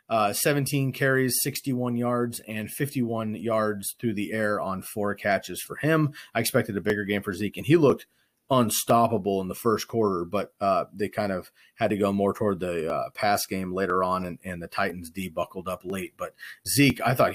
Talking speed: 200 wpm